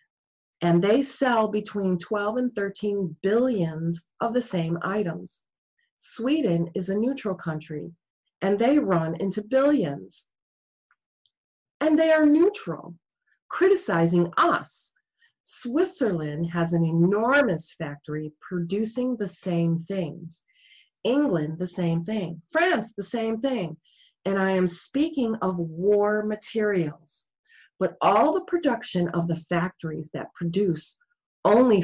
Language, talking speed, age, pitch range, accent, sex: English, 115 wpm, 40-59, 170-240 Hz, American, female